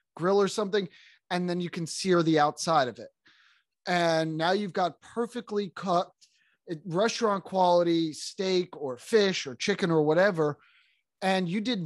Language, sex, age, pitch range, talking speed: English, male, 30-49, 150-180 Hz, 150 wpm